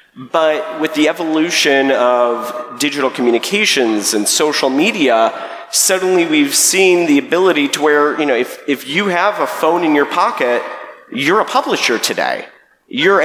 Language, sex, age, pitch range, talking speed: English, male, 30-49, 125-170 Hz, 150 wpm